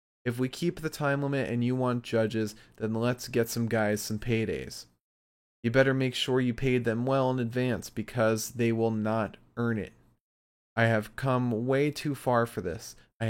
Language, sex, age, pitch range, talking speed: English, male, 20-39, 115-145 Hz, 190 wpm